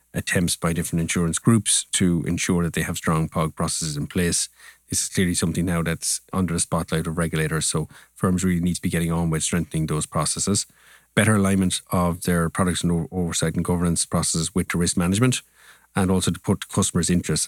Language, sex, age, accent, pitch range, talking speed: English, male, 30-49, Irish, 80-95 Hz, 195 wpm